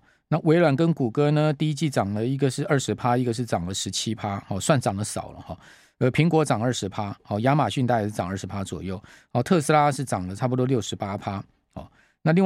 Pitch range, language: 105-150 Hz, Chinese